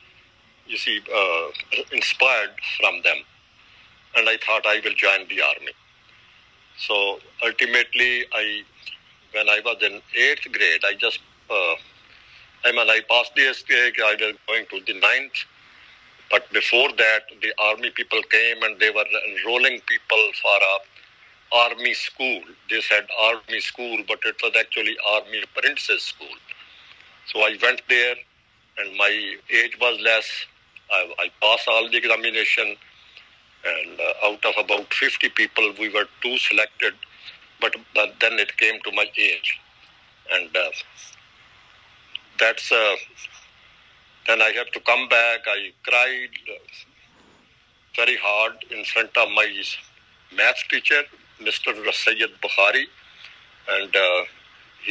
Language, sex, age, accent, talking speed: English, male, 50-69, Indian, 135 wpm